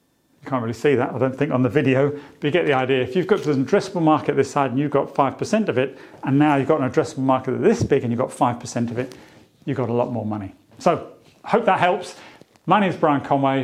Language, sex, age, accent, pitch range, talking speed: English, male, 40-59, British, 120-150 Hz, 270 wpm